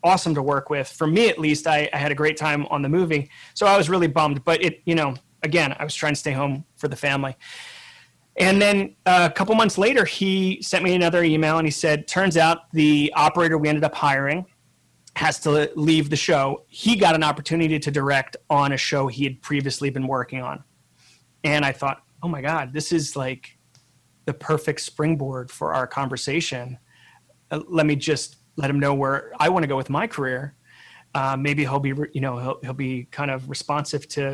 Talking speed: 210 wpm